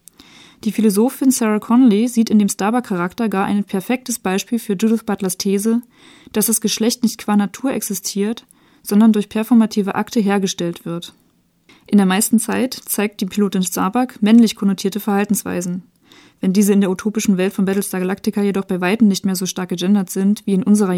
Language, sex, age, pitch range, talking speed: English, female, 20-39, 195-225 Hz, 175 wpm